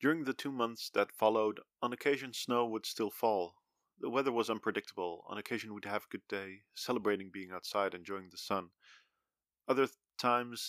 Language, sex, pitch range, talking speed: English, male, 100-120 Hz, 175 wpm